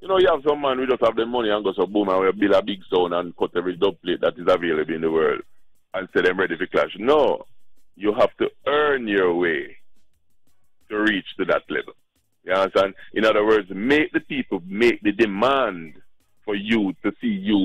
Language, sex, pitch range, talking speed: English, male, 95-145 Hz, 225 wpm